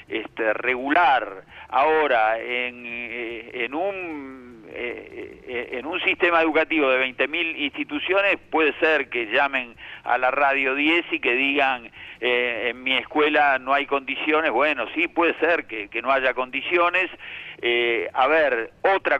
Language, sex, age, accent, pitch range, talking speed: Spanish, male, 50-69, Argentinian, 125-170 Hz, 140 wpm